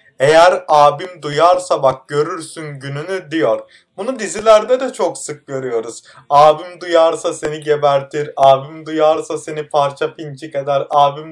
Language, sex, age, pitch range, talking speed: Turkish, male, 30-49, 150-195 Hz, 125 wpm